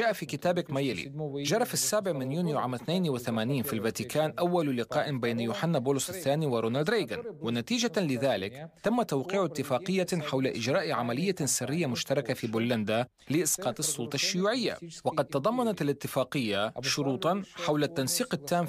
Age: 30-49